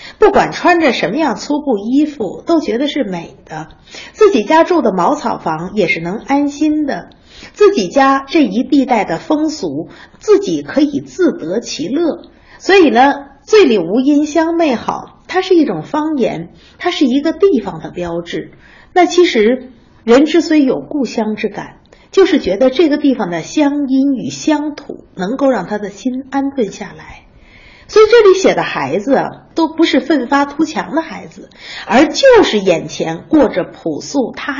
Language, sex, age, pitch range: Chinese, female, 50-69, 205-310 Hz